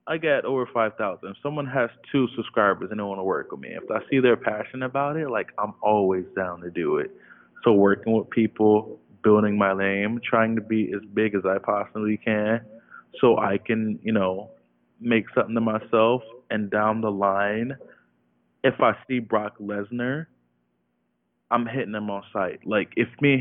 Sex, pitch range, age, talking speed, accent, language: male, 105-150 Hz, 20-39, 185 wpm, American, English